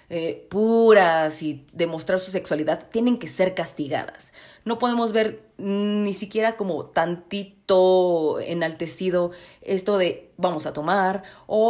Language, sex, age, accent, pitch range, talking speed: Spanish, female, 30-49, Mexican, 160-220 Hz, 125 wpm